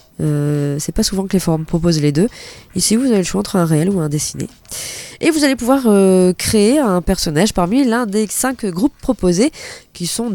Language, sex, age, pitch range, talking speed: French, female, 20-39, 155-210 Hz, 215 wpm